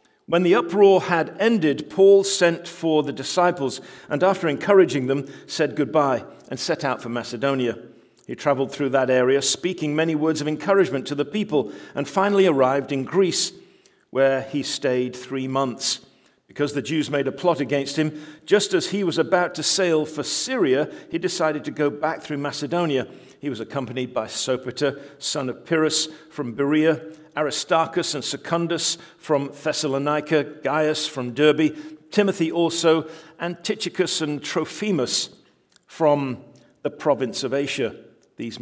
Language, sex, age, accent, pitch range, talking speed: English, male, 50-69, British, 130-160 Hz, 150 wpm